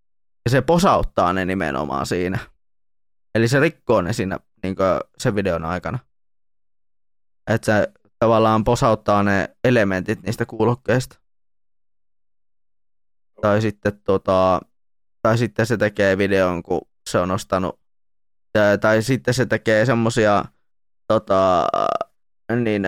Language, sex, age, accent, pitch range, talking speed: Finnish, male, 20-39, native, 100-120 Hz, 115 wpm